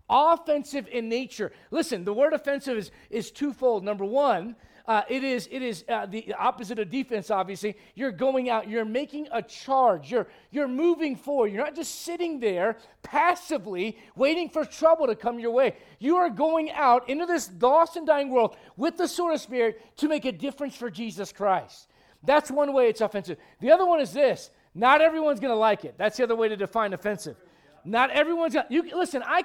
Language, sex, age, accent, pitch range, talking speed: English, male, 40-59, American, 225-295 Hz, 200 wpm